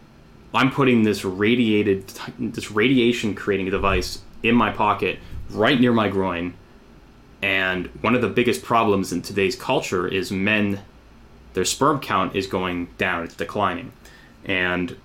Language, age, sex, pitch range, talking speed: English, 20-39, male, 95-120 Hz, 135 wpm